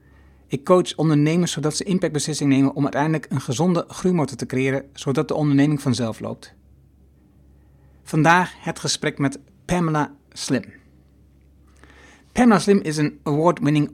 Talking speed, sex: 130 wpm, male